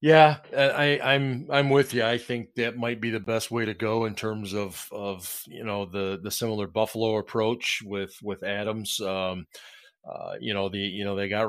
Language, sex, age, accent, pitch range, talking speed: English, male, 40-59, American, 95-125 Hz, 205 wpm